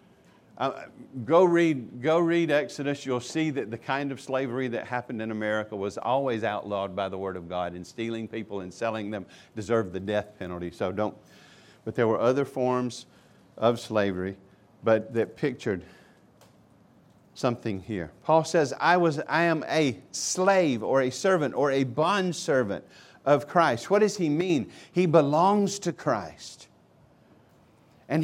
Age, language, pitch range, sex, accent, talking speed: 50-69, English, 125-180 Hz, male, American, 155 wpm